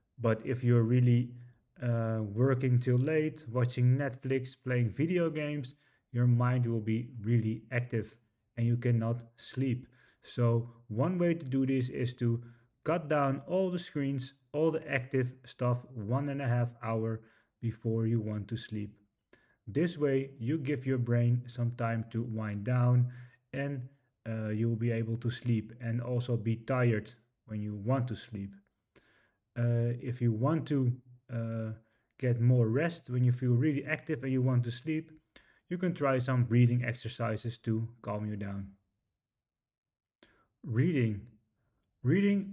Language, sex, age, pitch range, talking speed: English, male, 30-49, 115-135 Hz, 150 wpm